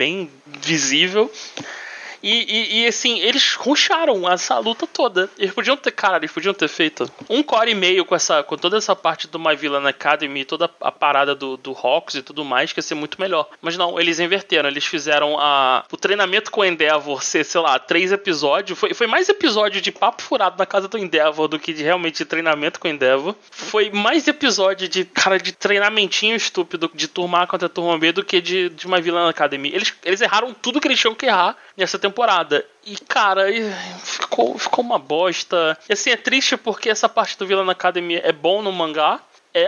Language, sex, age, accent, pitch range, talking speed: Portuguese, male, 20-39, Brazilian, 155-215 Hz, 210 wpm